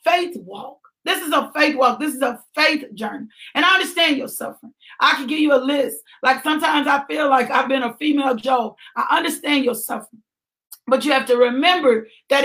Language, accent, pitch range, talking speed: English, American, 255-310 Hz, 205 wpm